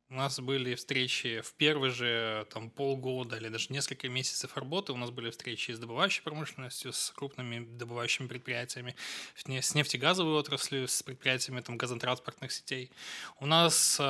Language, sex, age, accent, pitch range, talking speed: Ukrainian, male, 20-39, native, 130-165 Hz, 150 wpm